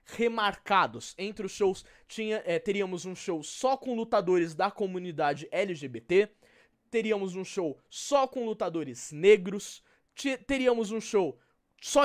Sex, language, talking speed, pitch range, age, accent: male, Portuguese, 120 wpm, 160-235 Hz, 20-39, Brazilian